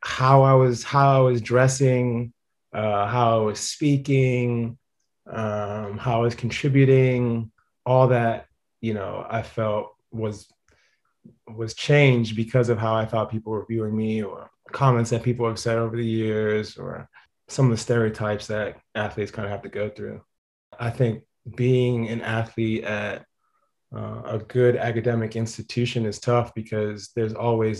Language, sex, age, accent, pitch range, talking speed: English, male, 30-49, American, 110-125 Hz, 160 wpm